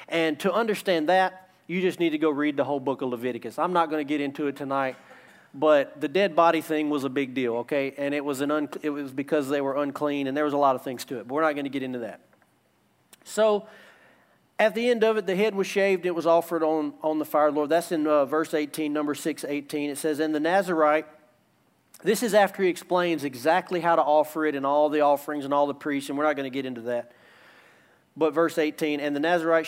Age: 40-59